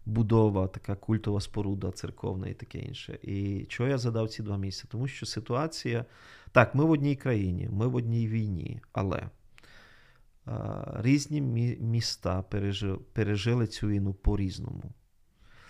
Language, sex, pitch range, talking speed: Ukrainian, male, 100-125 Hz, 130 wpm